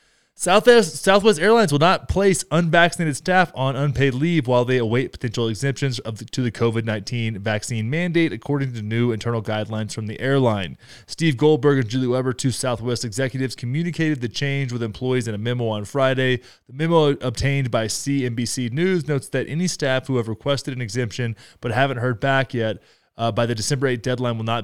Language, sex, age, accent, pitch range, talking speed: English, male, 20-39, American, 120-165 Hz, 185 wpm